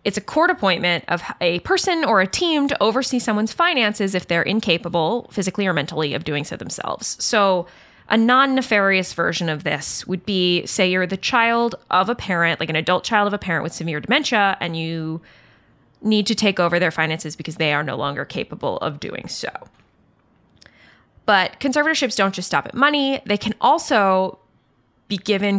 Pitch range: 165-215 Hz